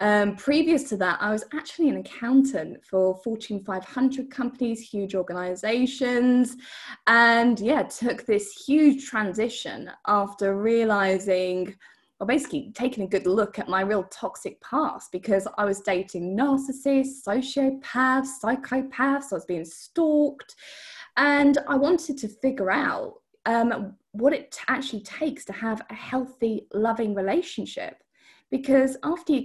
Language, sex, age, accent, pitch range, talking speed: English, female, 20-39, British, 200-275 Hz, 130 wpm